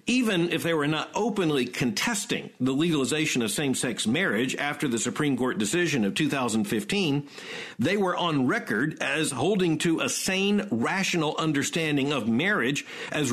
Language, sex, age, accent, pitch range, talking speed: English, male, 50-69, American, 140-195 Hz, 155 wpm